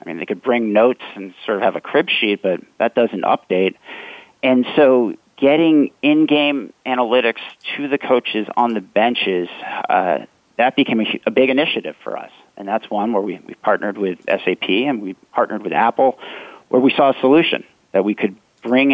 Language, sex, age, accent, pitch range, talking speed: English, male, 40-59, American, 105-130 Hz, 190 wpm